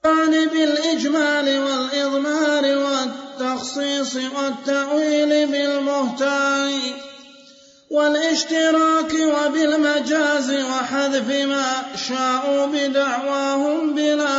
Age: 30-49